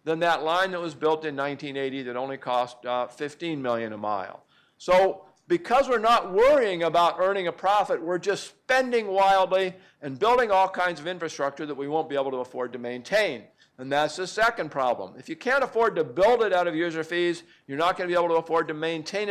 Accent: American